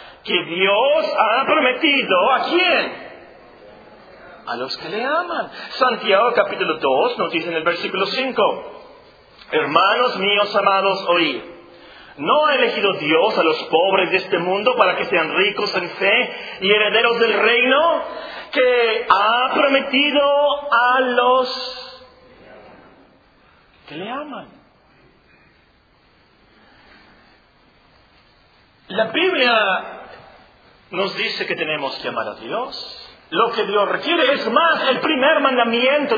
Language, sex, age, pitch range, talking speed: Spanish, male, 40-59, 205-290 Hz, 120 wpm